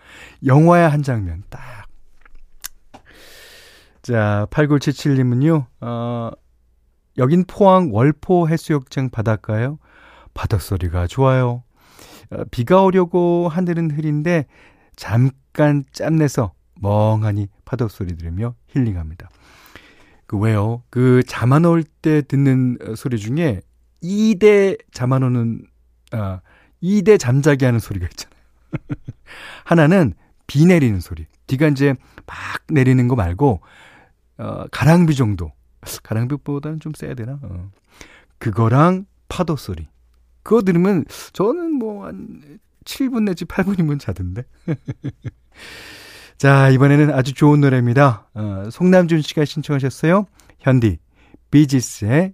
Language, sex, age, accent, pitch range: Korean, male, 40-59, native, 105-155 Hz